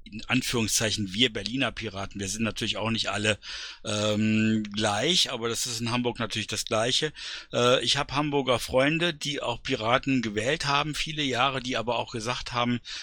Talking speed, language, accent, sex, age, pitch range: 175 wpm, German, German, male, 50-69, 115-135 Hz